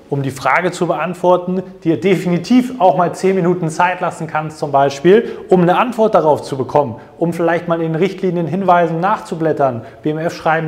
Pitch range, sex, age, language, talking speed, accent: 150-180 Hz, male, 30-49, German, 180 wpm, German